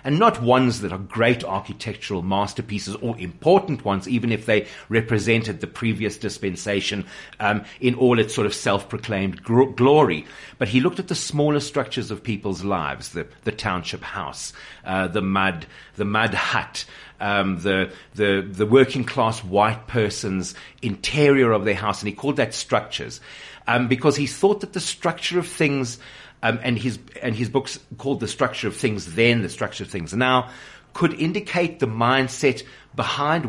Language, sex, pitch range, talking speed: English, male, 105-135 Hz, 165 wpm